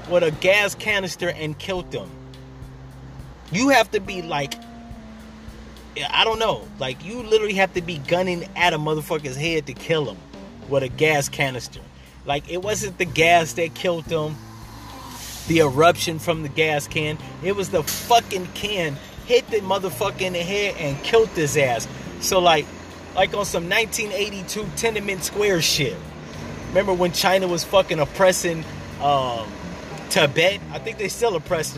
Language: English